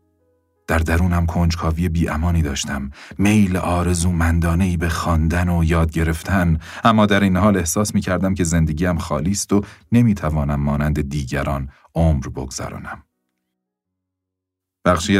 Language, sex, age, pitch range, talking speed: Persian, male, 40-59, 75-95 Hz, 120 wpm